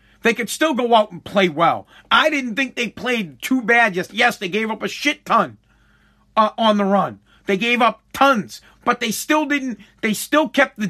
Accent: American